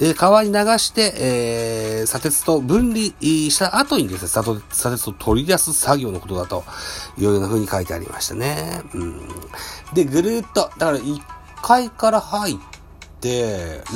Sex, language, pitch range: male, Japanese, 105-170 Hz